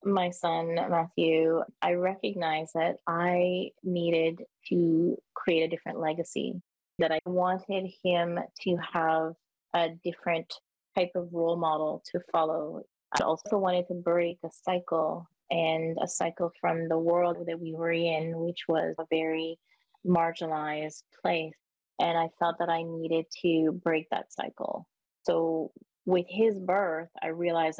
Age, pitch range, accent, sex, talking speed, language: 20-39, 160-180 Hz, American, female, 140 wpm, English